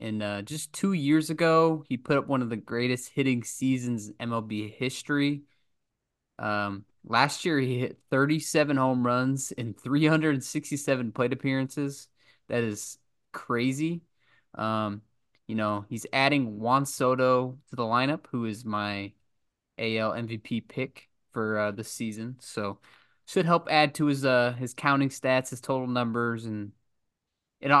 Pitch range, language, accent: 115-140 Hz, English, American